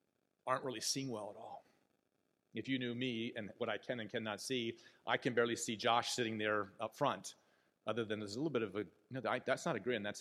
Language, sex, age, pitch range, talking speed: English, male, 40-59, 125-160 Hz, 235 wpm